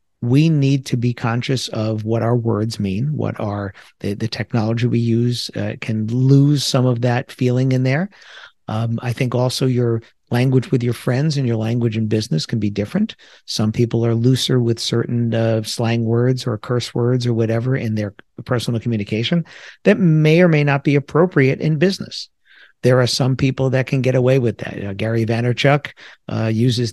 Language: English